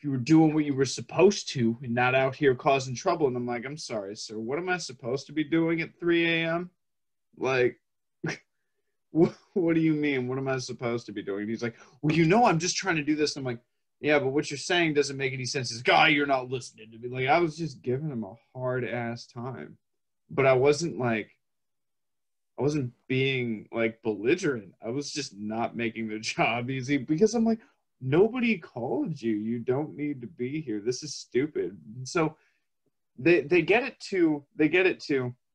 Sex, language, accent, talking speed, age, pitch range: male, English, American, 210 wpm, 20-39, 115-155 Hz